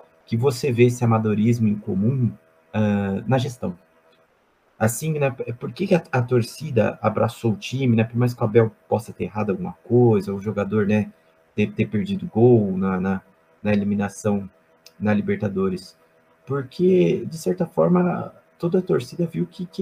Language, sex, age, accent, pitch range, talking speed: Portuguese, male, 30-49, Brazilian, 100-140 Hz, 165 wpm